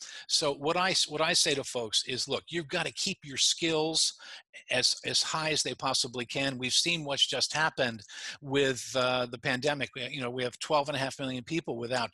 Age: 50-69